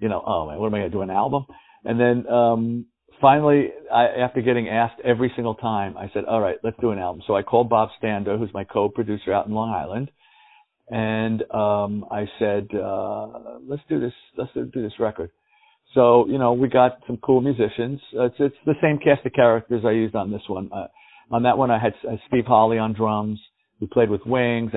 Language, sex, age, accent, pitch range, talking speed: English, male, 50-69, American, 105-125 Hz, 220 wpm